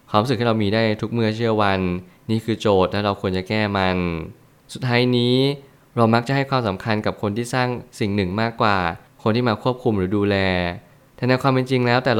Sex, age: male, 20-39